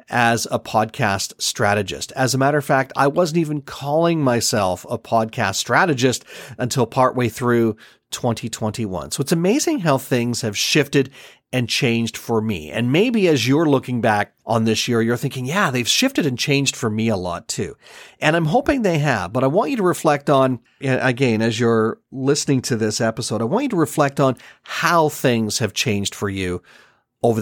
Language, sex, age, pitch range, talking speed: English, male, 40-59, 115-145 Hz, 185 wpm